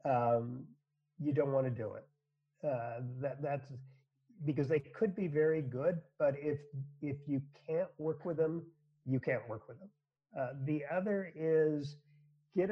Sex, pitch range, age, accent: male, 130-150 Hz, 50-69, American